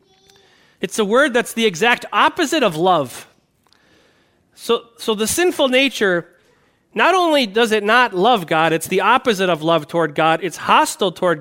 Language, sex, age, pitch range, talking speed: English, male, 40-59, 180-250 Hz, 165 wpm